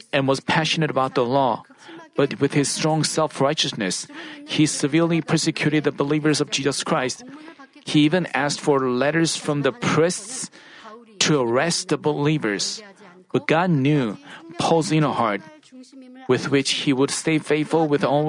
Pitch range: 145-175 Hz